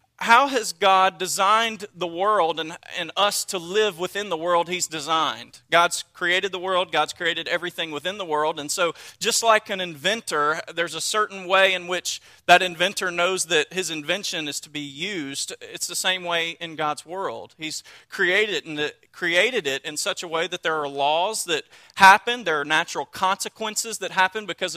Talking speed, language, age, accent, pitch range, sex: 185 wpm, English, 40-59, American, 165-205 Hz, male